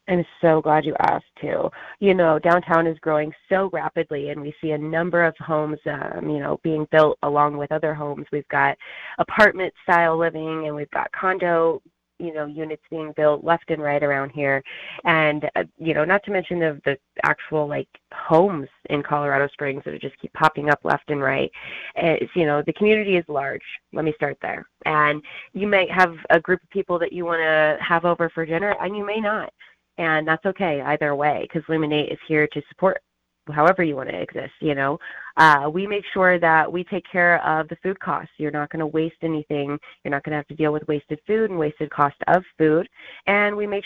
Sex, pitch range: female, 150-180 Hz